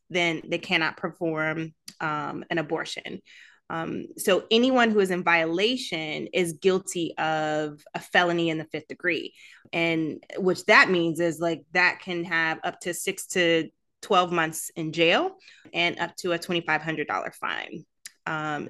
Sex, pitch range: female, 165-195 Hz